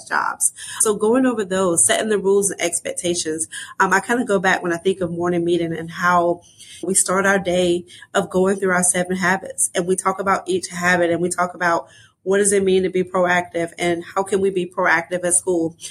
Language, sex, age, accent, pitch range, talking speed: English, female, 30-49, American, 180-220 Hz, 225 wpm